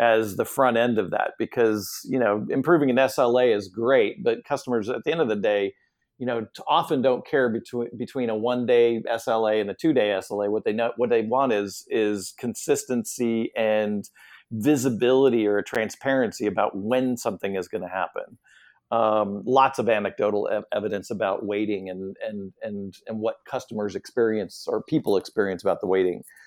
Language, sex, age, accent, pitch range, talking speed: English, male, 40-59, American, 110-135 Hz, 175 wpm